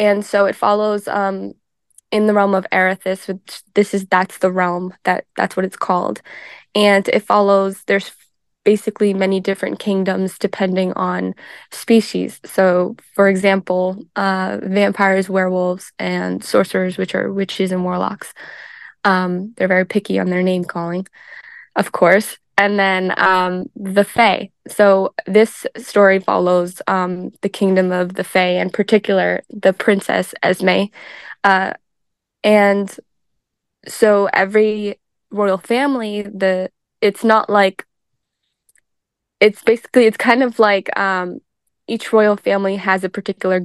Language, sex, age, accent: English, female, 10-29, American